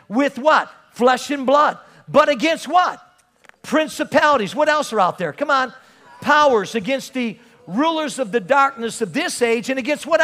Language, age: English, 50-69